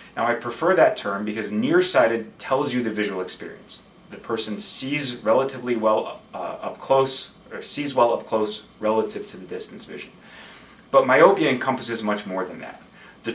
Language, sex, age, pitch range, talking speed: English, male, 30-49, 105-130 Hz, 170 wpm